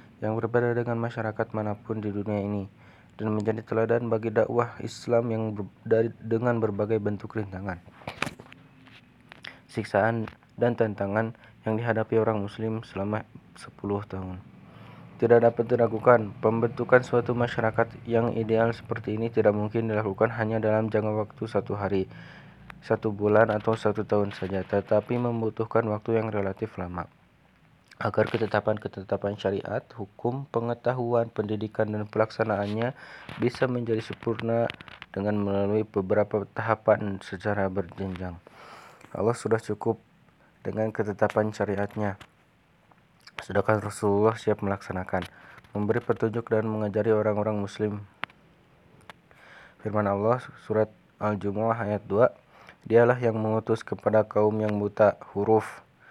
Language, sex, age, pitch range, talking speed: Indonesian, male, 20-39, 105-115 Hz, 120 wpm